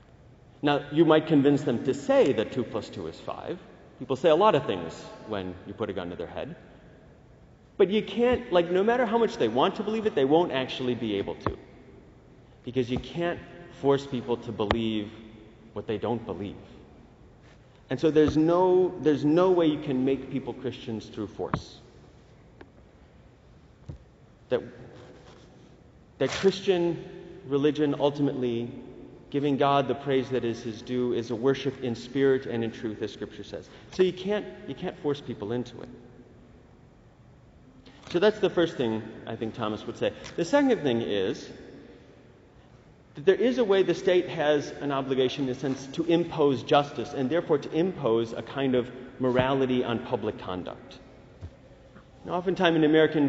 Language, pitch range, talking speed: English, 120-165 Hz, 170 wpm